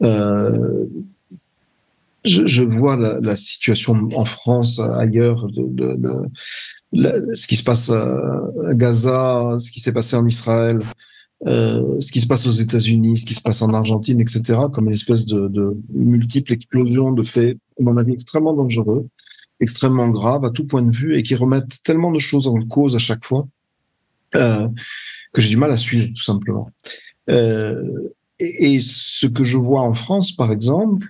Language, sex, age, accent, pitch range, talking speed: French, male, 40-59, French, 110-125 Hz, 180 wpm